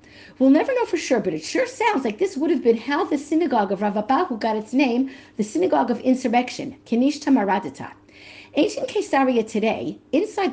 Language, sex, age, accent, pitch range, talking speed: English, female, 50-69, American, 210-290 Hz, 180 wpm